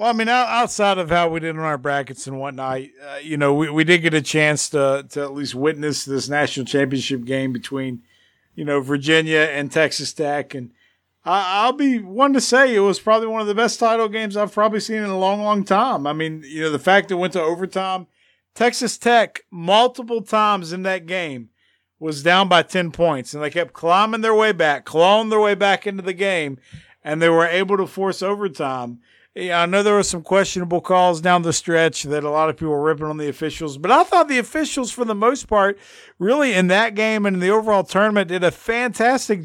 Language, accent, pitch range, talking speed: English, American, 150-200 Hz, 225 wpm